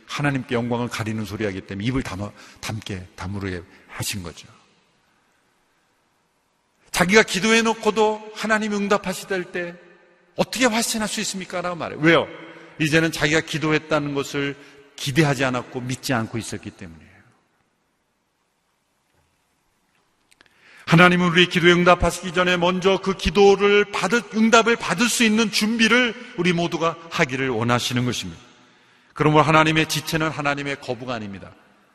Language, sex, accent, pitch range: Korean, male, native, 120-180 Hz